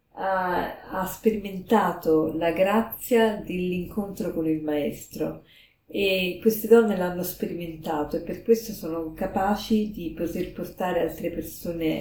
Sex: female